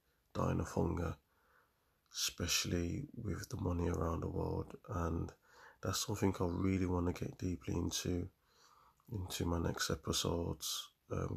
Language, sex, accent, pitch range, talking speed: English, male, British, 85-95 Hz, 130 wpm